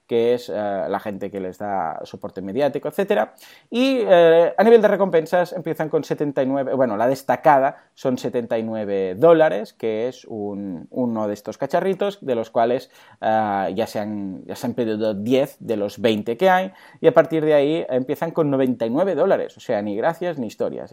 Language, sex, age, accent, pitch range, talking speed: Spanish, male, 20-39, Spanish, 110-160 Hz, 185 wpm